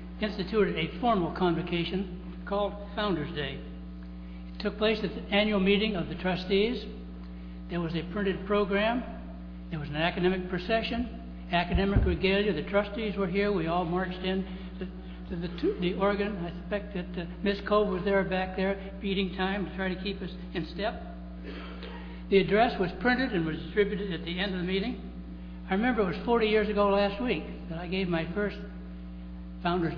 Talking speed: 180 wpm